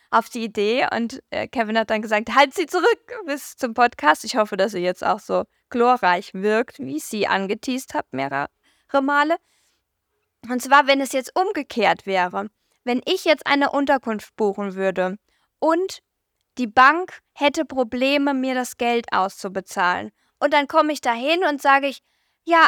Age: 10-29